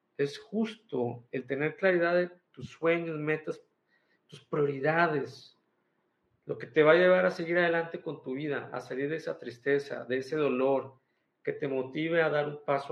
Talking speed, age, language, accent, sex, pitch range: 175 wpm, 50-69, Spanish, Mexican, male, 125-160 Hz